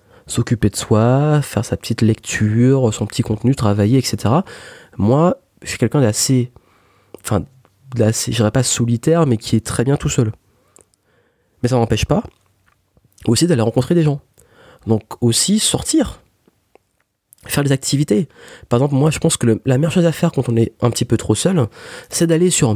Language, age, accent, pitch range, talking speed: French, 30-49, French, 110-145 Hz, 180 wpm